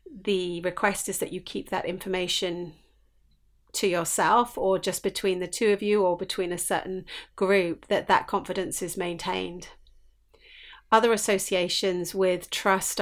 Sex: female